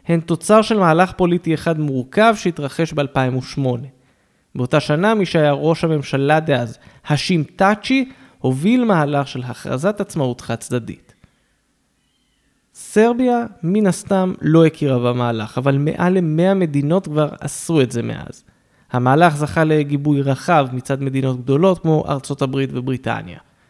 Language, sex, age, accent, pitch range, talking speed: Hebrew, male, 20-39, native, 130-175 Hz, 125 wpm